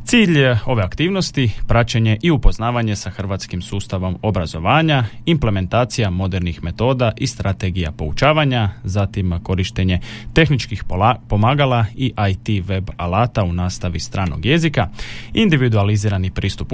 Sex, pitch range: male, 95-120 Hz